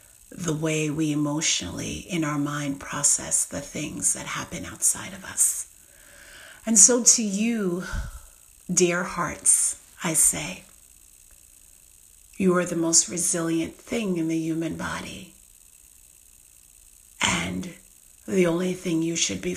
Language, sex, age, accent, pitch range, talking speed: English, female, 40-59, American, 155-185 Hz, 125 wpm